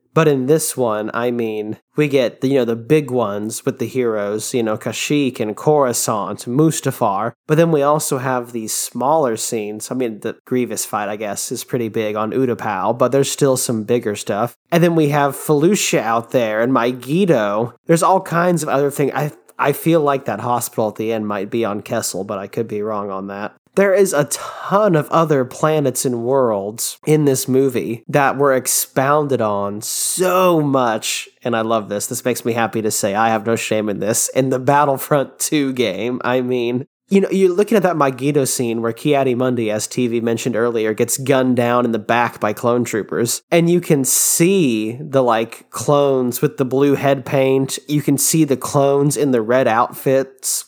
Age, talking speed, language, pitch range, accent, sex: 30-49, 200 wpm, English, 115-145 Hz, American, male